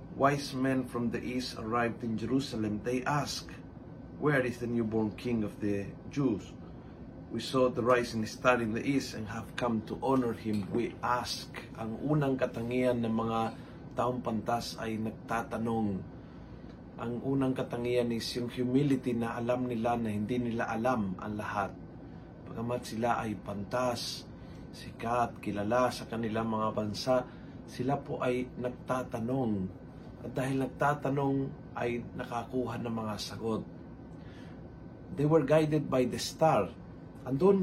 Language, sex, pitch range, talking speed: Filipino, male, 115-135 Hz, 140 wpm